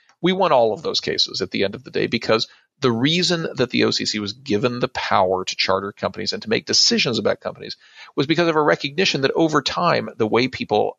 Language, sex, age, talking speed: English, male, 40-59, 230 wpm